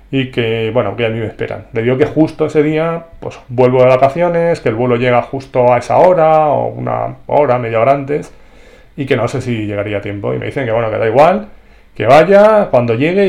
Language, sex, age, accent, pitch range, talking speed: Spanish, male, 30-49, Spanish, 115-145 Hz, 235 wpm